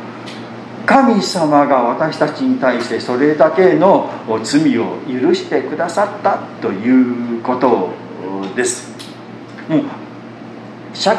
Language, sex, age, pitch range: Japanese, male, 40-59, 125-185 Hz